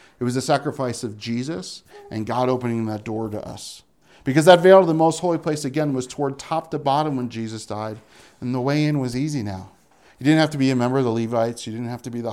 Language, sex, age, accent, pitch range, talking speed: English, male, 40-59, American, 120-150 Hz, 260 wpm